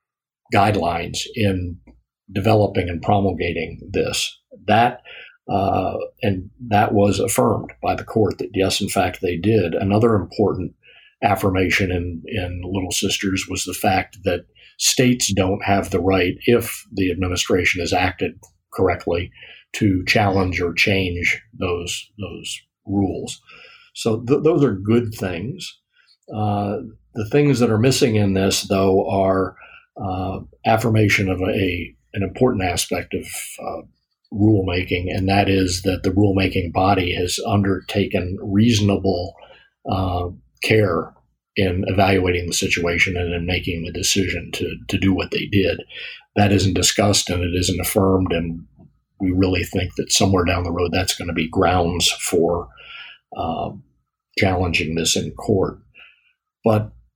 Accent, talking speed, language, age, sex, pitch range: American, 140 wpm, English, 50-69, male, 90-105 Hz